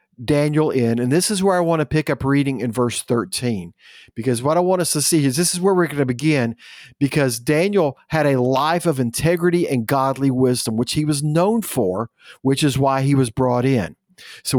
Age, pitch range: 50-69, 135-190 Hz